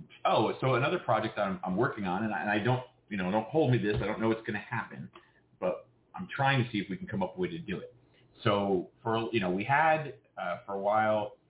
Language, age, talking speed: English, 30-49, 270 wpm